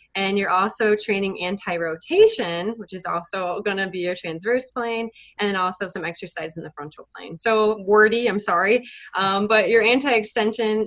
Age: 20-39